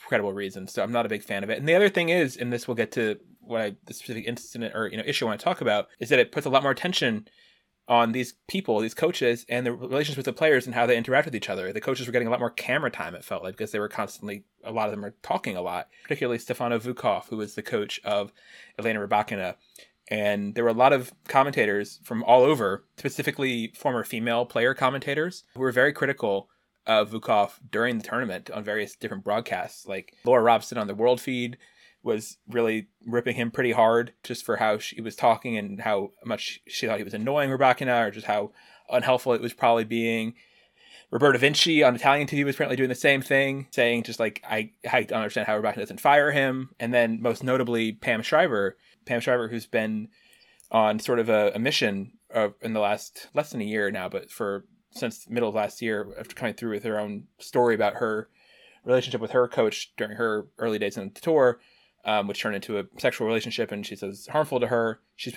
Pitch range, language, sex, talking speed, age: 110-130 Hz, English, male, 230 wpm, 20-39